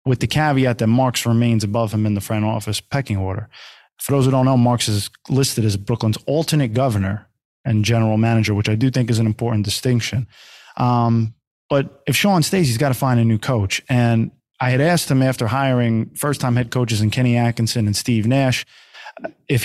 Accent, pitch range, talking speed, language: American, 110-130 Hz, 205 wpm, English